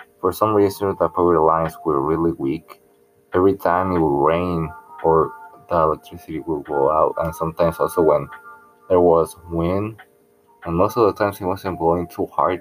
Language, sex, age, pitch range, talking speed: English, male, 20-39, 85-100 Hz, 175 wpm